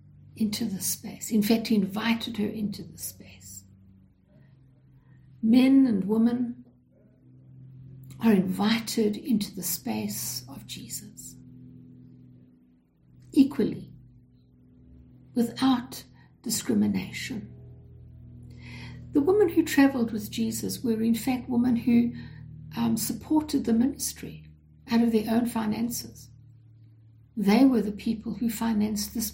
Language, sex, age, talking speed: English, female, 60-79, 105 wpm